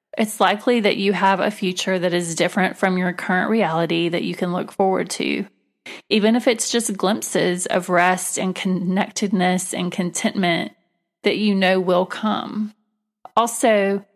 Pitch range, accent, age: 180-210 Hz, American, 30-49